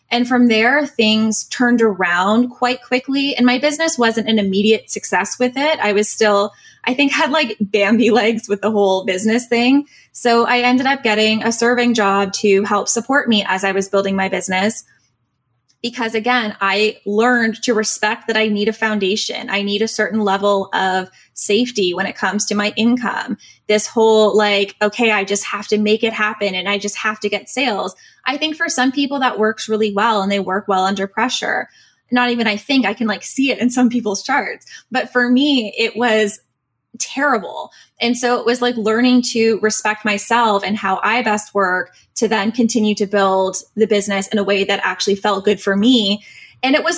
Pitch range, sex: 205-245 Hz, female